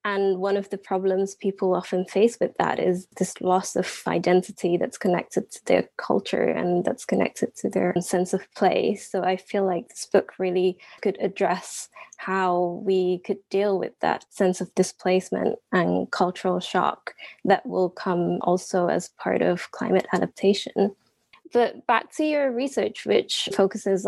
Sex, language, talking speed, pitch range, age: female, English, 160 wpm, 180-200 Hz, 20-39